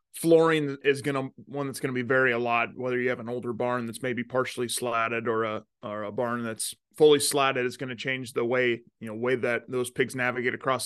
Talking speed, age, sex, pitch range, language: 240 wpm, 20-39, male, 120-135 Hz, English